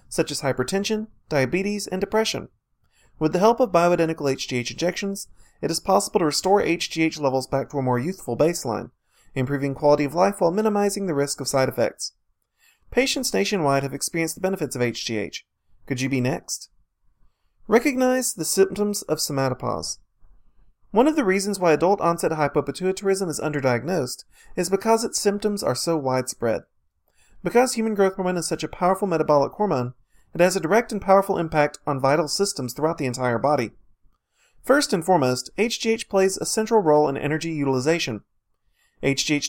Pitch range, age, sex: 140-200 Hz, 30-49, male